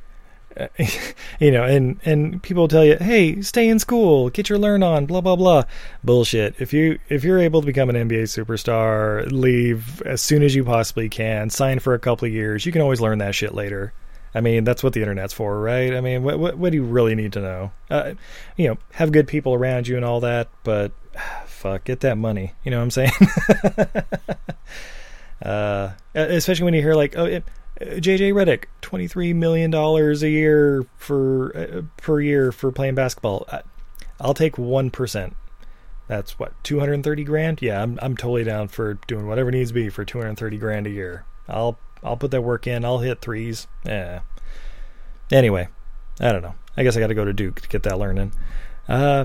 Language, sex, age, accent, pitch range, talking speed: English, male, 20-39, American, 110-150 Hz, 210 wpm